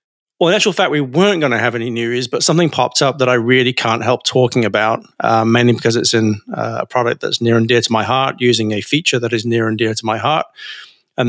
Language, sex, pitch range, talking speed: English, male, 115-135 Hz, 260 wpm